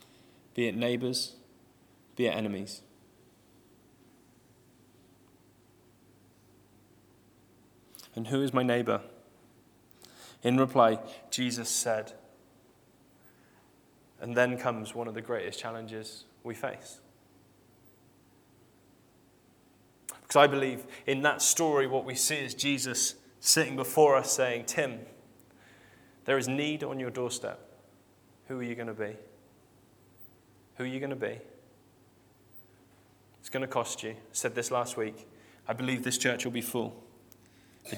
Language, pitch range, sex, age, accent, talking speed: English, 105-130 Hz, male, 20-39, British, 120 wpm